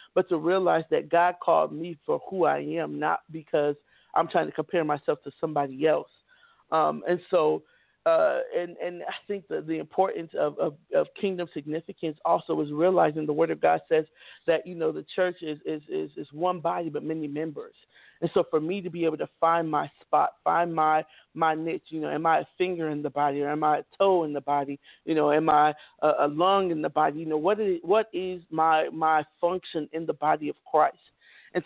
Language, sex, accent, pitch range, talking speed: English, male, American, 150-180 Hz, 220 wpm